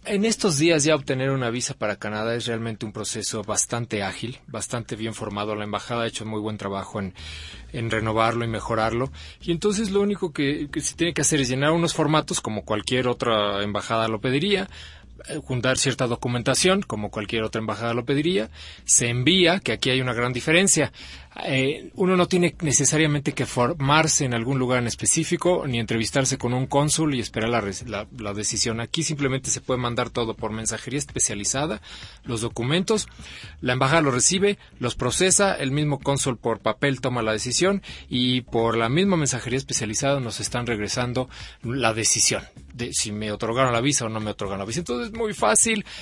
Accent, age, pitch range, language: Mexican, 30-49, 110-155 Hz, Spanish